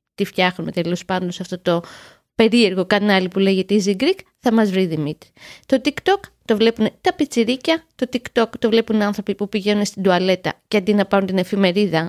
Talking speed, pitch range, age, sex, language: 190 wpm, 195-300 Hz, 20-39, female, Greek